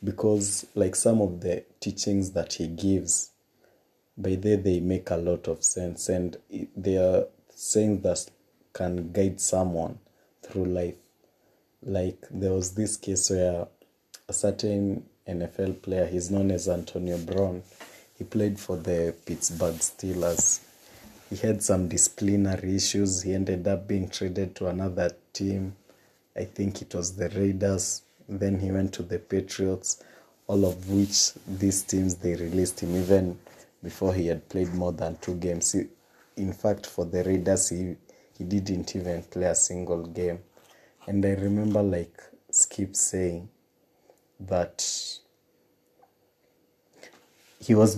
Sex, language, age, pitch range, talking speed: male, English, 30-49, 90-100 Hz, 140 wpm